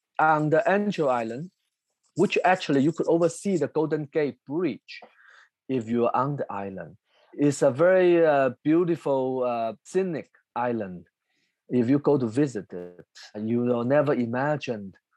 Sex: male